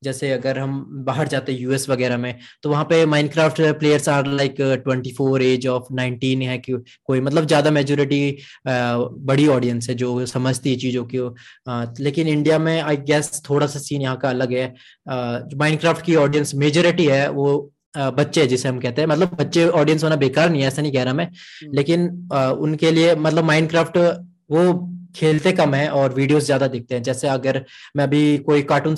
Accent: native